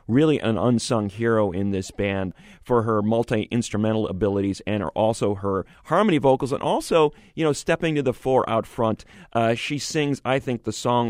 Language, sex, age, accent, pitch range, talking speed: English, male, 40-59, American, 100-130 Hz, 185 wpm